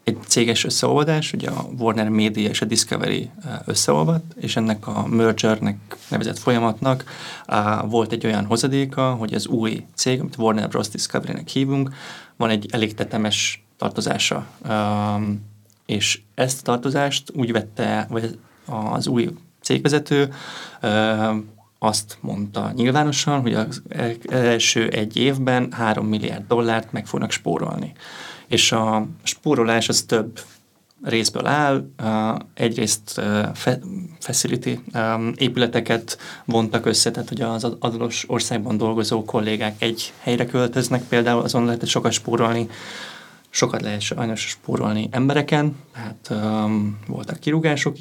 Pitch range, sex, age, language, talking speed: 110-125 Hz, male, 30-49, Hungarian, 120 wpm